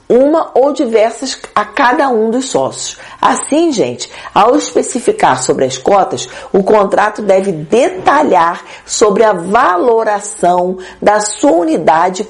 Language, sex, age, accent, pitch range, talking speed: Portuguese, female, 40-59, Brazilian, 170-245 Hz, 120 wpm